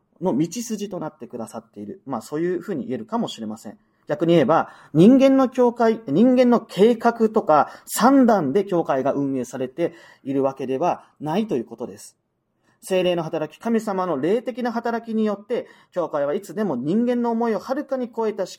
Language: Japanese